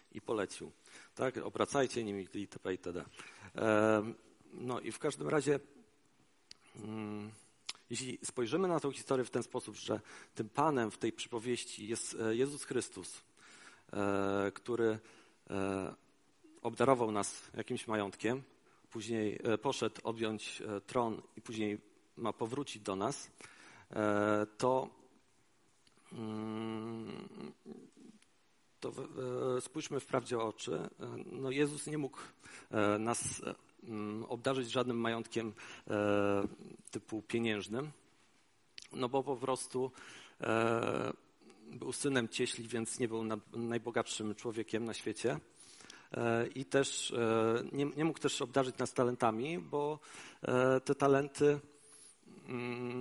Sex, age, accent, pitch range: male, 40-59, native, 110-130 Hz